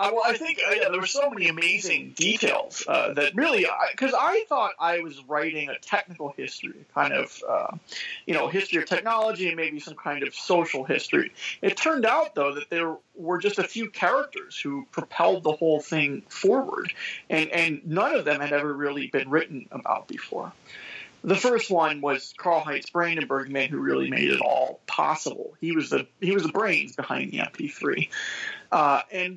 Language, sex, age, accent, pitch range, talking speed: English, male, 40-59, American, 150-225 Hz, 190 wpm